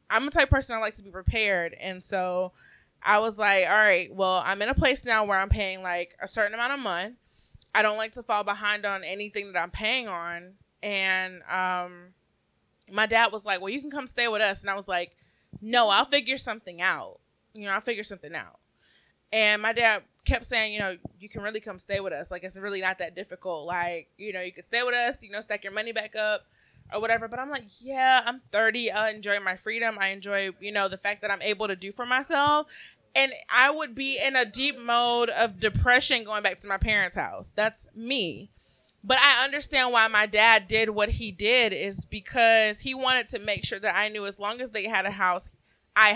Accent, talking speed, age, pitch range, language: American, 230 wpm, 20-39, 195-240 Hz, English